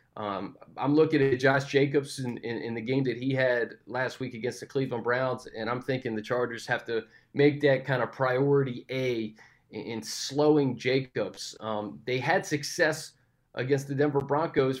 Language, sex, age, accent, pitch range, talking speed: English, male, 30-49, American, 120-145 Hz, 180 wpm